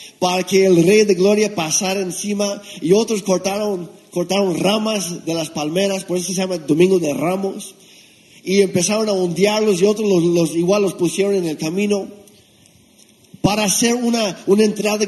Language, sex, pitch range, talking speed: Spanish, male, 160-195 Hz, 160 wpm